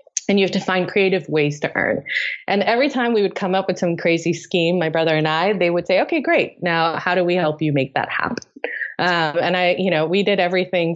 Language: English